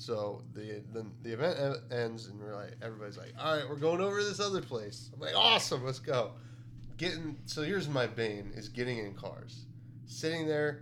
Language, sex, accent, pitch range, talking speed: English, male, American, 110-125 Hz, 200 wpm